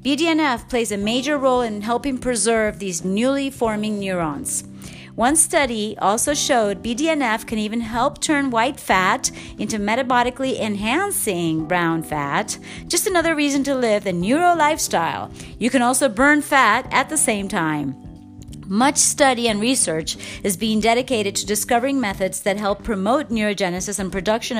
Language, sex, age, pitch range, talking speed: English, female, 40-59, 205-280 Hz, 150 wpm